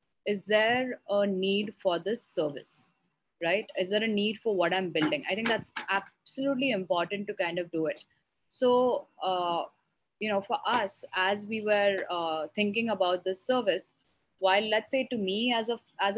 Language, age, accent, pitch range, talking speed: English, 20-39, Indian, 185-235 Hz, 180 wpm